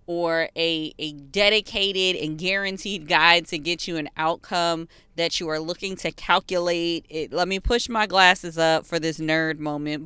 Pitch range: 165-205 Hz